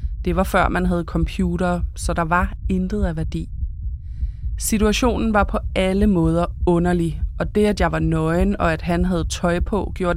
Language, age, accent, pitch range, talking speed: Danish, 20-39, native, 155-195 Hz, 185 wpm